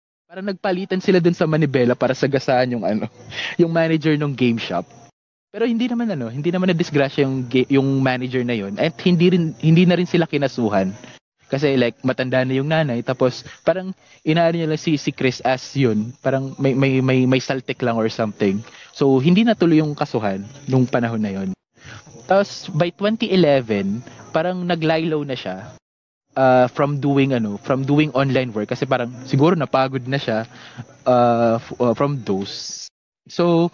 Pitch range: 130-175 Hz